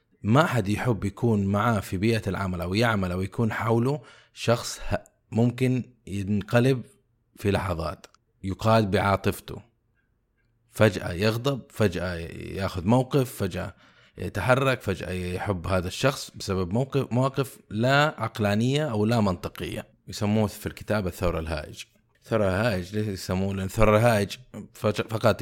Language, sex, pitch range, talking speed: Arabic, male, 95-120 Hz, 115 wpm